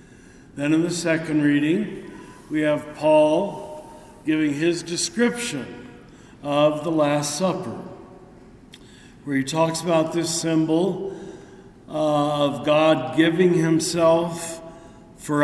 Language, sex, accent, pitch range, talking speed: English, male, American, 145-165 Hz, 100 wpm